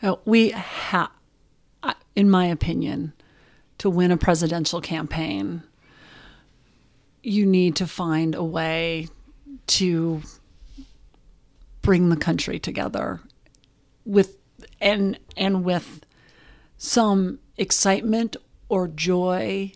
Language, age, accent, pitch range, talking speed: English, 40-59, American, 170-220 Hz, 90 wpm